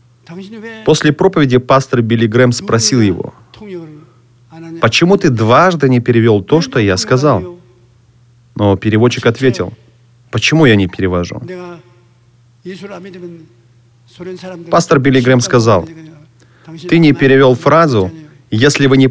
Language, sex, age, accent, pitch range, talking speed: Russian, male, 30-49, native, 120-165 Hz, 105 wpm